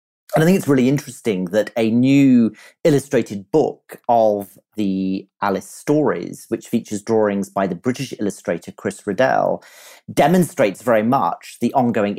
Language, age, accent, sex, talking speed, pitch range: English, 40-59, British, male, 145 wpm, 105-135 Hz